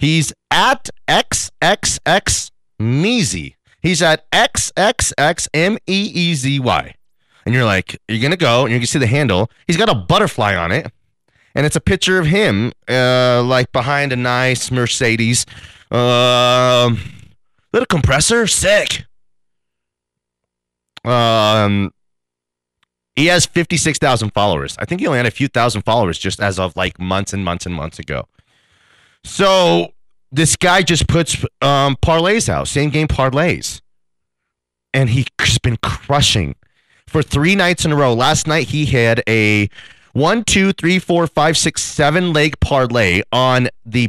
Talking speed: 145 wpm